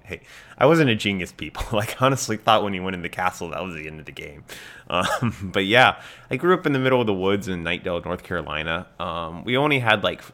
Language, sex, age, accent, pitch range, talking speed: English, male, 20-39, American, 85-105 Hz, 255 wpm